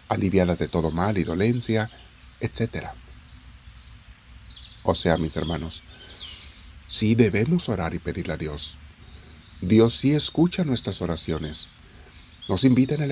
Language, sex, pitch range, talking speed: Spanish, male, 80-110 Hz, 125 wpm